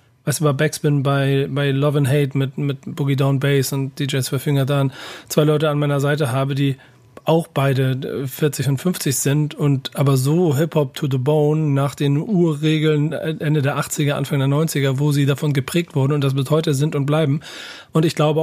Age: 40-59